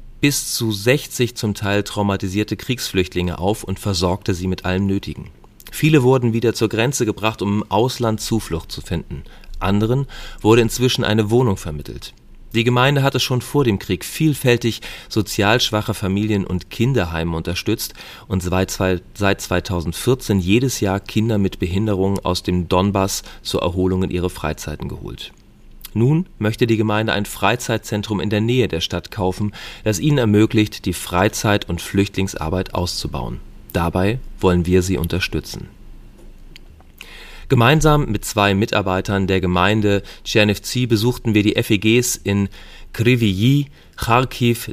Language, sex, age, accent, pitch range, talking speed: German, male, 40-59, German, 95-115 Hz, 135 wpm